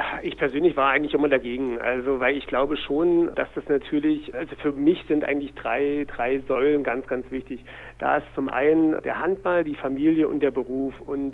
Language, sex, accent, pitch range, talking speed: German, male, German, 135-150 Hz, 195 wpm